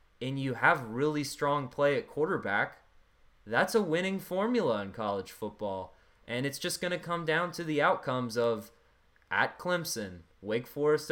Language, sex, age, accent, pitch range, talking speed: English, male, 20-39, American, 110-130 Hz, 160 wpm